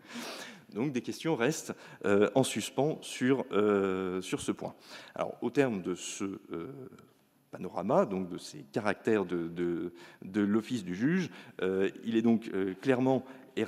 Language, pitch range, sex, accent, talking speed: French, 90-125 Hz, male, French, 160 wpm